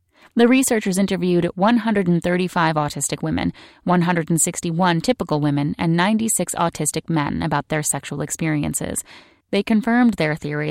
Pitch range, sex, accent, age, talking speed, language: 155-190 Hz, female, American, 30-49, 120 wpm, English